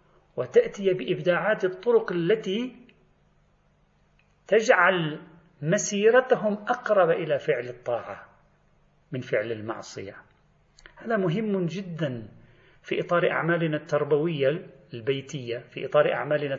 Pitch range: 130-170 Hz